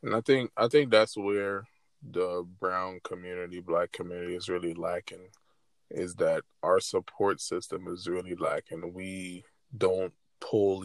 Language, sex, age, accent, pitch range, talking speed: English, male, 20-39, American, 95-145 Hz, 145 wpm